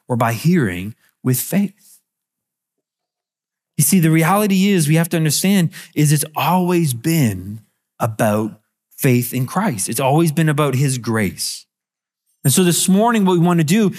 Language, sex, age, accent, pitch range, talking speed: English, male, 30-49, American, 120-170 Hz, 155 wpm